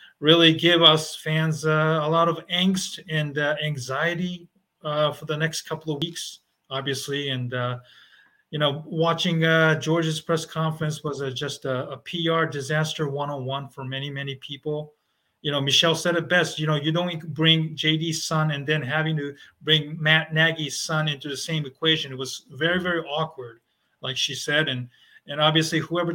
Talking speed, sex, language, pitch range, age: 180 wpm, male, English, 140-165 Hz, 30-49